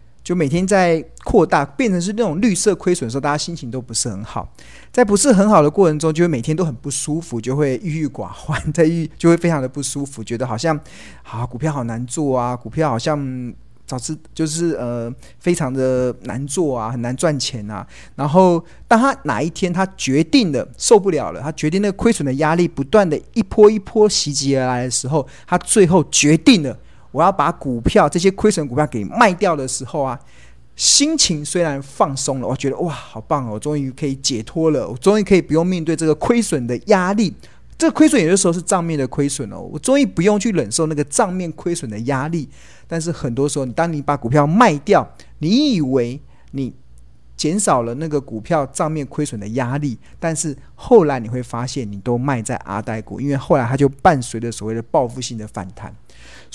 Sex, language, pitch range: male, Chinese, 125-175 Hz